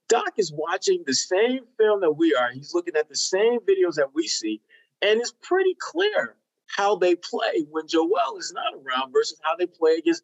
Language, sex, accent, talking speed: English, male, American, 205 wpm